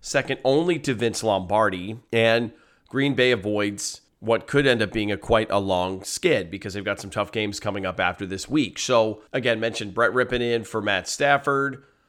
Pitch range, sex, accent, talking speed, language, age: 105-125 Hz, male, American, 195 wpm, English, 30-49